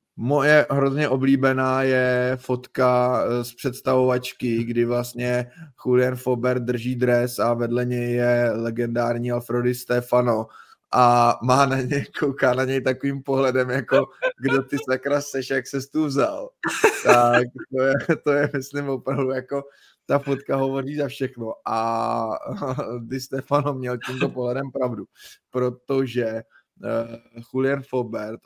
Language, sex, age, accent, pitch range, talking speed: Czech, male, 20-39, native, 120-130 Hz, 125 wpm